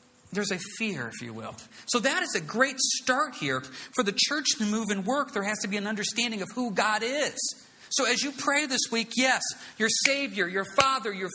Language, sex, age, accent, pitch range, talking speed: English, male, 40-59, American, 165-245 Hz, 220 wpm